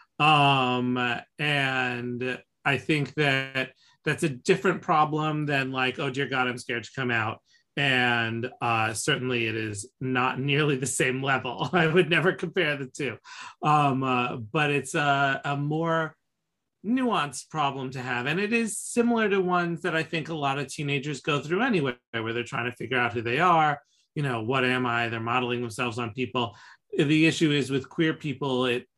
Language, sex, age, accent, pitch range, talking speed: English, male, 30-49, American, 125-160 Hz, 180 wpm